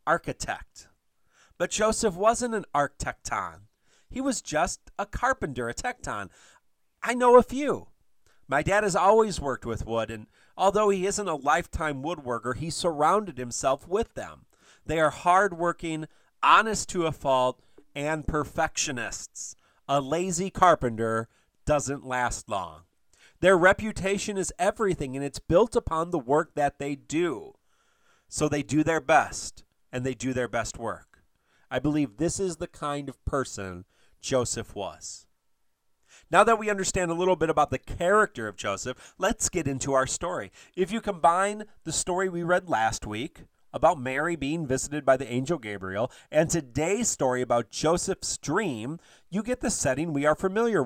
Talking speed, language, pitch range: 155 wpm, English, 130-190 Hz